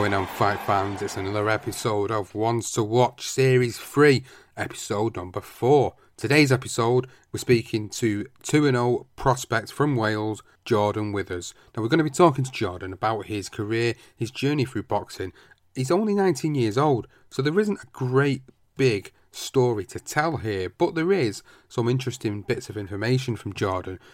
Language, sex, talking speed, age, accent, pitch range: English, male, 165 wpm, 30-49, British, 105-130 Hz